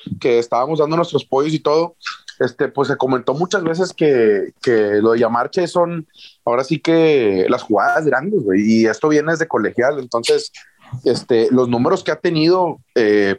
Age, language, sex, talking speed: 30-49, Spanish, male, 175 wpm